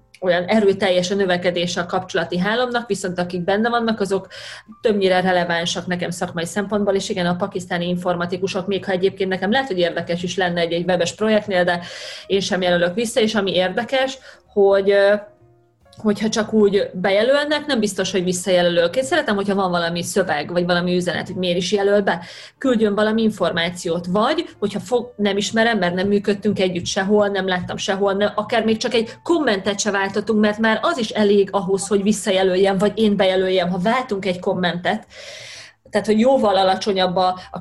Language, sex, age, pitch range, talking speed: Hungarian, female, 30-49, 180-215 Hz, 170 wpm